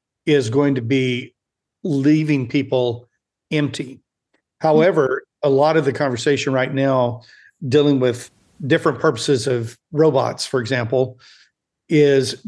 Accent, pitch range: American, 125-145 Hz